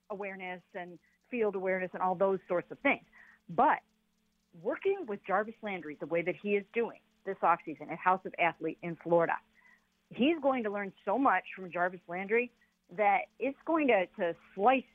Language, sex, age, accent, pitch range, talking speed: English, female, 50-69, American, 185-235 Hz, 175 wpm